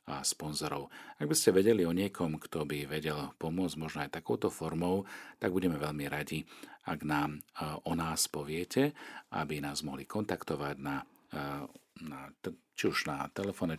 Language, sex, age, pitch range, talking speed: Slovak, male, 40-59, 80-95 Hz, 150 wpm